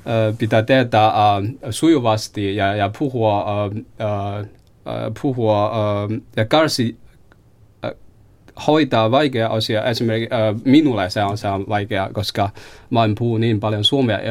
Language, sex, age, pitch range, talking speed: Finnish, male, 20-39, 110-140 Hz, 135 wpm